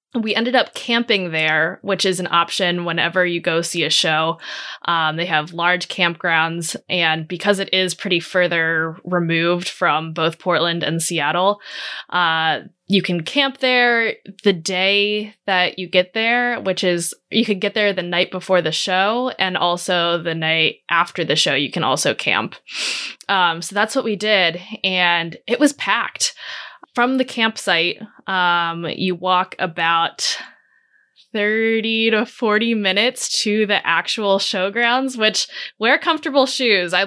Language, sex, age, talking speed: English, female, 20-39, 155 wpm